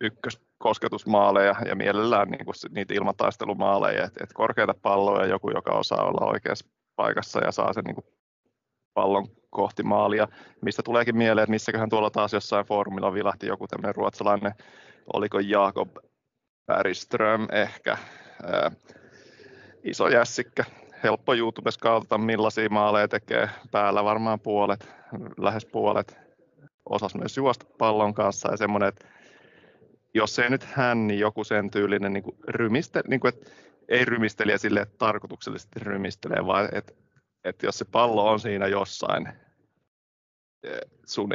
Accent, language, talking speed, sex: native, Finnish, 130 wpm, male